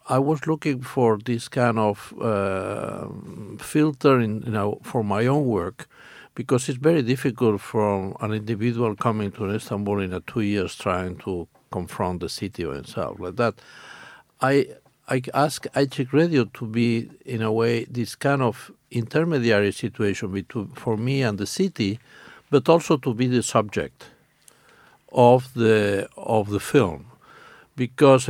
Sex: male